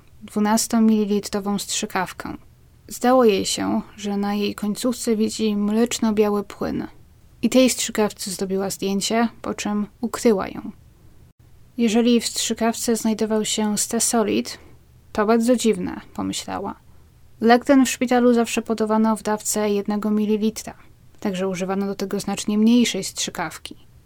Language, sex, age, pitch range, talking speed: Polish, female, 20-39, 195-225 Hz, 120 wpm